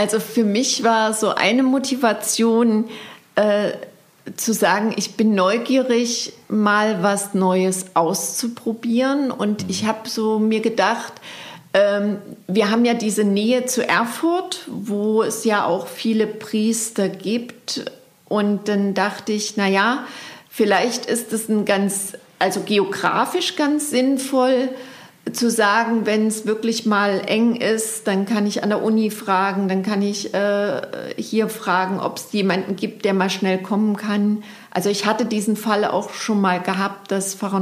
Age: 40-59